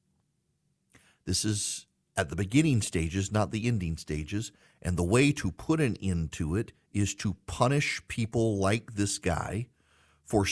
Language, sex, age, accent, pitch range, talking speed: English, male, 40-59, American, 100-125 Hz, 155 wpm